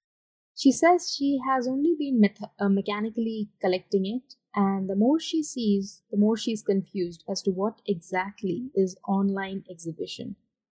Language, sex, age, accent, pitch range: Japanese, female, 20-39, Indian, 195-245 Hz